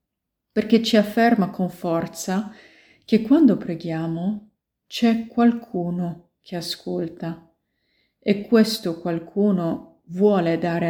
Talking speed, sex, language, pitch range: 95 wpm, female, Italian, 165-220 Hz